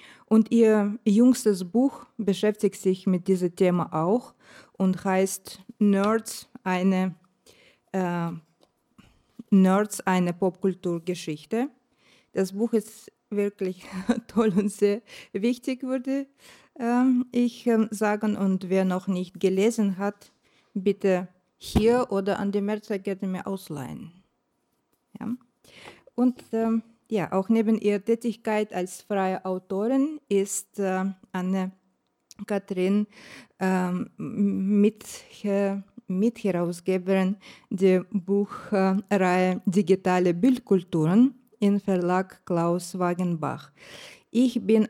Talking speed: 100 wpm